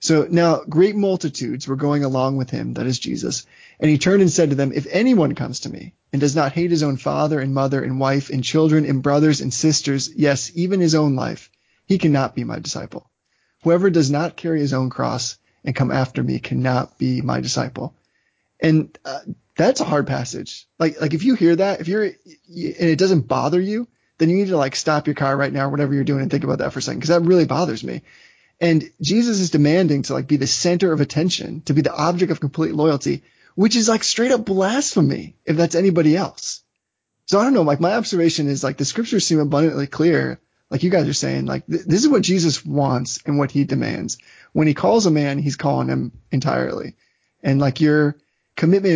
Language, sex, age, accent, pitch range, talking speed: English, male, 20-39, American, 140-175 Hz, 220 wpm